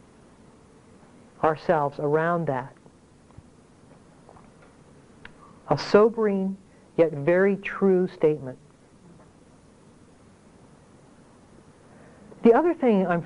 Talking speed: 60 wpm